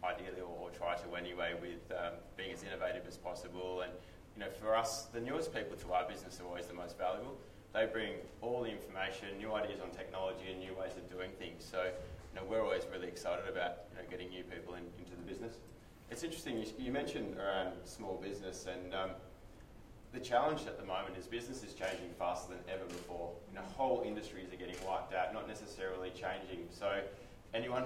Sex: male